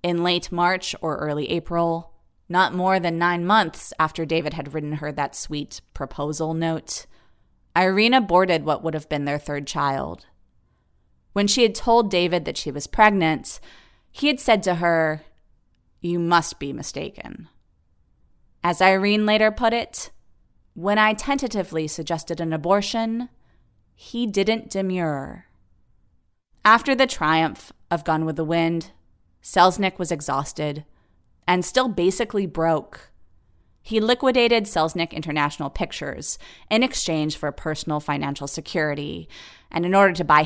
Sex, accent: female, American